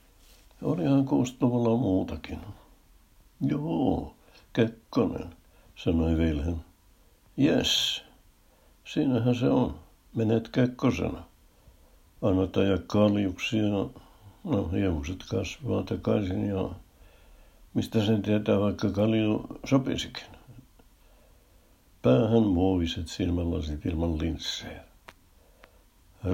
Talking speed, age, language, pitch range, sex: 75 wpm, 60-79, Finnish, 80-100 Hz, male